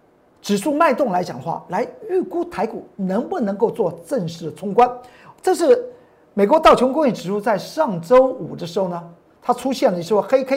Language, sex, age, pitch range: Chinese, male, 50-69, 195-295 Hz